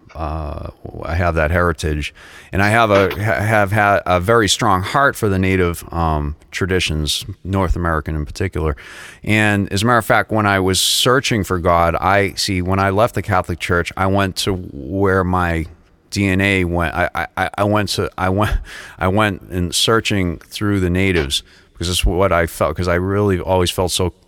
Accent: American